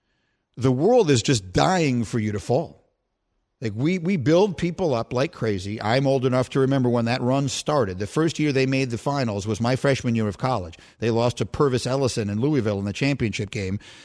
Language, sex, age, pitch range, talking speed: English, male, 50-69, 120-160 Hz, 215 wpm